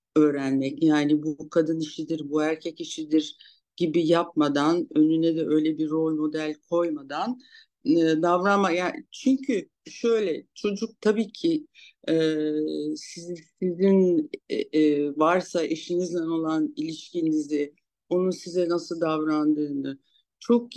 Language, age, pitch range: Turkish, 60-79, 155-235 Hz